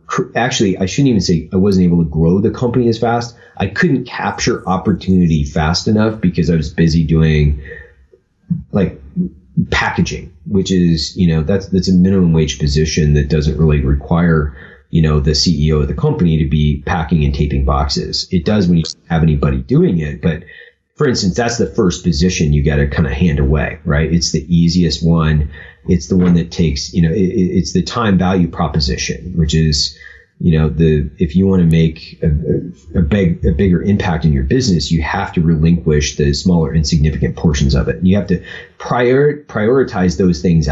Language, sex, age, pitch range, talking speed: English, male, 30-49, 80-90 Hz, 195 wpm